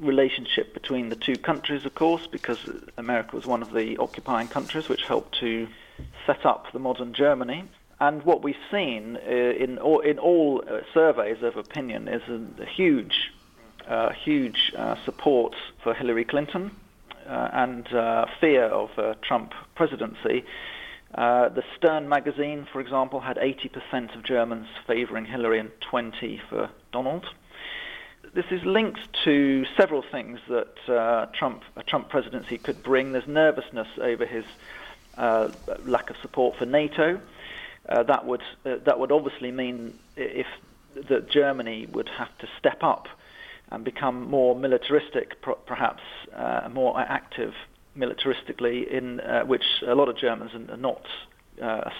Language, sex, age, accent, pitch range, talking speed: English, male, 40-59, British, 120-160 Hz, 150 wpm